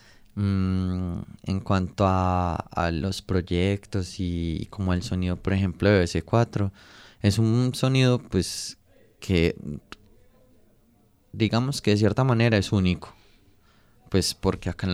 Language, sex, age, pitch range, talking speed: Spanish, male, 20-39, 90-105 Hz, 135 wpm